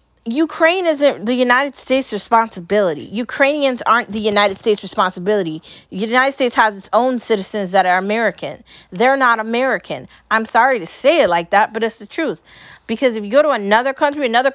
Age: 30-49